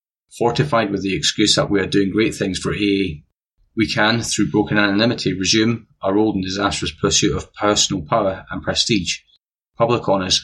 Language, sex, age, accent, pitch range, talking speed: English, male, 30-49, British, 90-105 Hz, 170 wpm